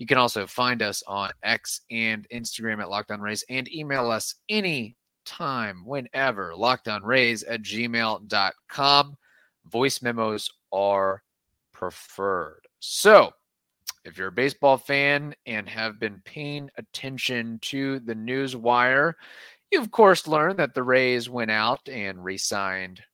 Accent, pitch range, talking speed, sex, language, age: American, 105-130 Hz, 130 wpm, male, English, 30-49